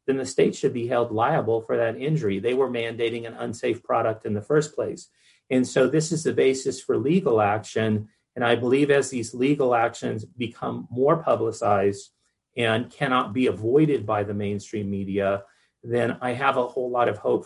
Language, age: English, 40-59